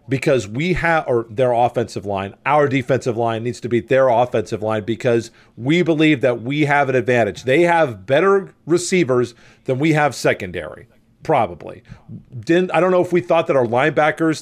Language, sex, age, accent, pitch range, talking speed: English, male, 40-59, American, 125-155 Hz, 180 wpm